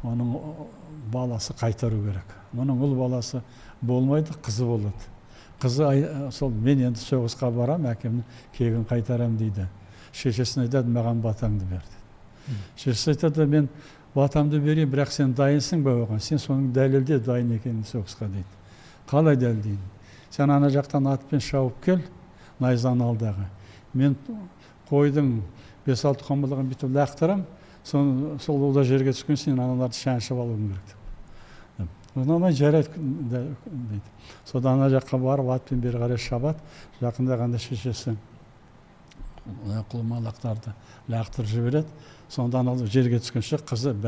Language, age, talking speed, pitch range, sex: Russian, 60-79, 90 wpm, 115-140 Hz, male